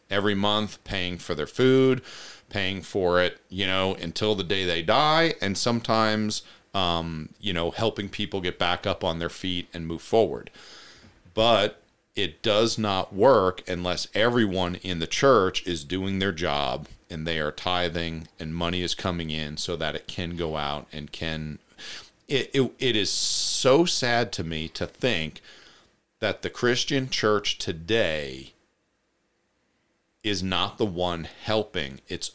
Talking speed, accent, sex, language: 155 wpm, American, male, English